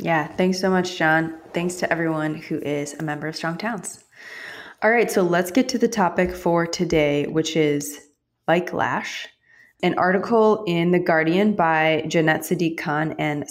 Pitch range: 150-180 Hz